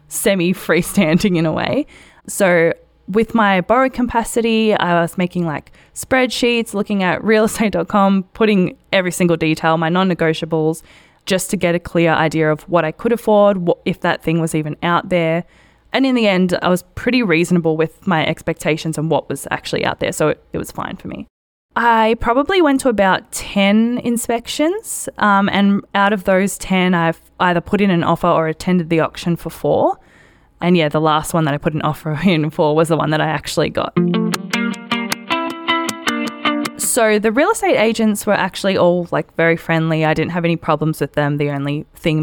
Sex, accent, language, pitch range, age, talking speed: female, Australian, English, 160-205 Hz, 20-39, 185 wpm